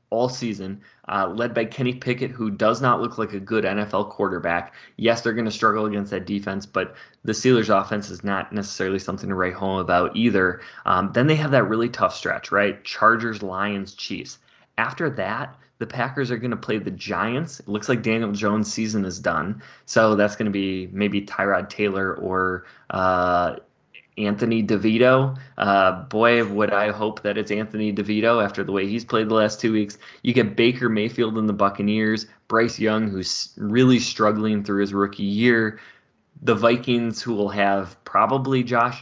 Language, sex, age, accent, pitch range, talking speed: English, male, 20-39, American, 100-115 Hz, 185 wpm